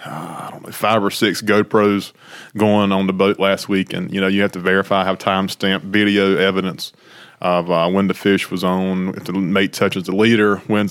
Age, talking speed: 20-39, 210 wpm